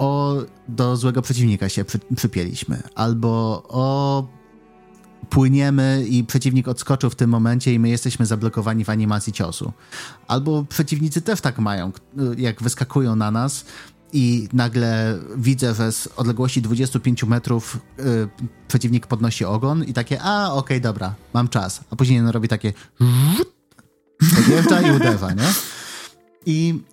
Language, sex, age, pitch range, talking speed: Polish, male, 30-49, 110-135 Hz, 140 wpm